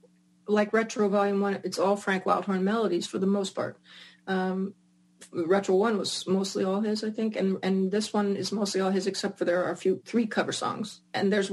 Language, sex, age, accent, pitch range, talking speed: English, female, 30-49, American, 190-225 Hz, 215 wpm